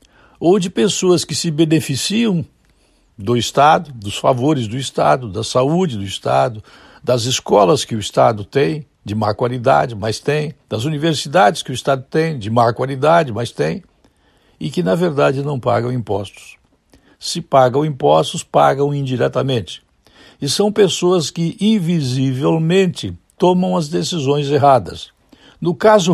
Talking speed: 140 wpm